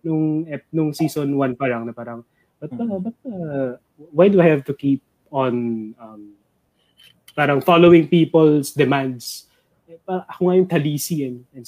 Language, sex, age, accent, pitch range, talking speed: English, male, 20-39, Filipino, 125-175 Hz, 155 wpm